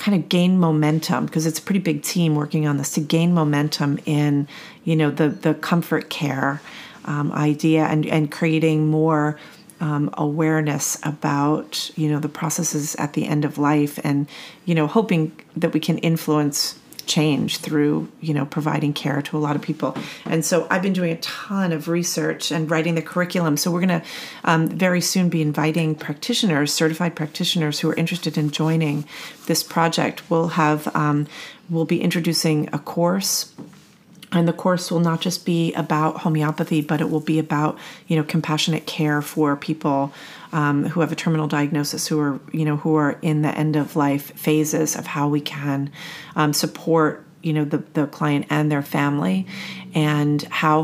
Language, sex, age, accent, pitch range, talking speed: English, female, 40-59, American, 150-170 Hz, 180 wpm